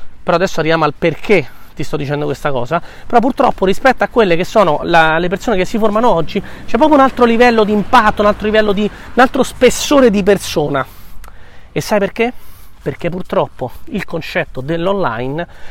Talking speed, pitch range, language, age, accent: 185 wpm, 135-200 Hz, Italian, 30-49, native